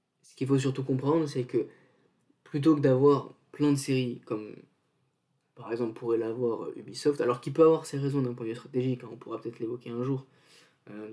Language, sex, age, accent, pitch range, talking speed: French, male, 20-39, French, 120-140 Hz, 205 wpm